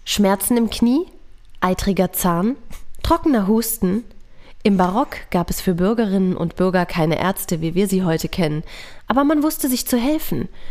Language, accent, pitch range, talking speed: German, German, 185-235 Hz, 155 wpm